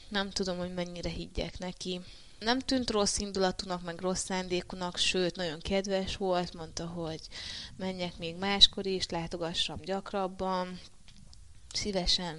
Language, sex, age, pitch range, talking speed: Hungarian, female, 20-39, 160-190 Hz, 125 wpm